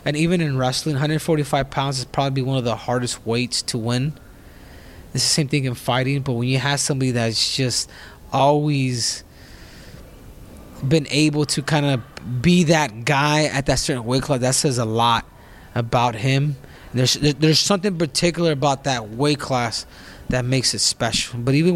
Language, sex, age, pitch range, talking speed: English, male, 20-39, 120-150 Hz, 175 wpm